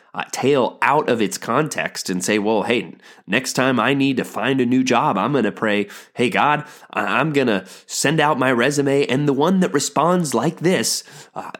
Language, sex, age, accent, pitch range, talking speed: English, male, 20-39, American, 115-150 Hz, 205 wpm